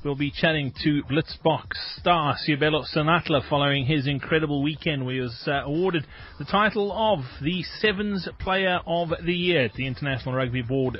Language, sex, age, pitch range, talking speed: English, male, 30-49, 130-170 Hz, 170 wpm